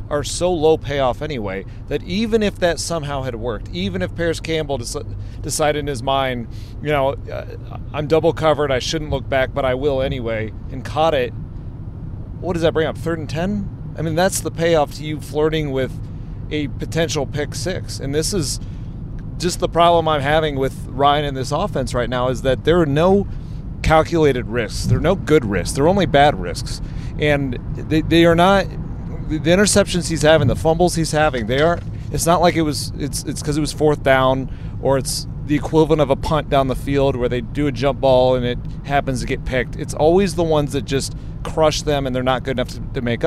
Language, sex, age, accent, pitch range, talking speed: English, male, 30-49, American, 125-155 Hz, 215 wpm